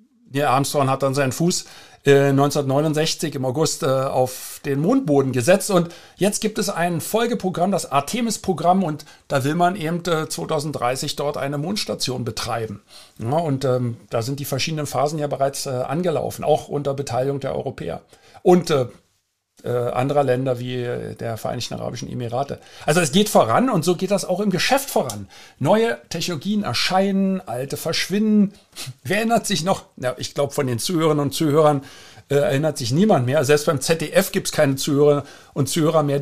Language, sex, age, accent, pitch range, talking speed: German, male, 50-69, German, 130-175 Hz, 170 wpm